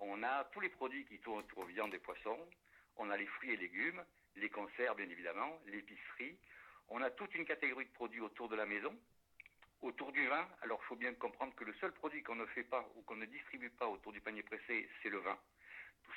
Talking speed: 235 wpm